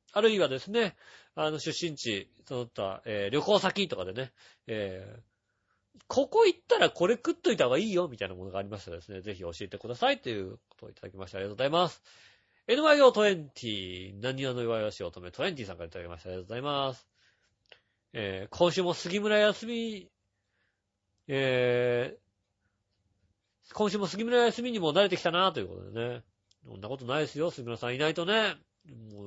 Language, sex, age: Japanese, male, 40-59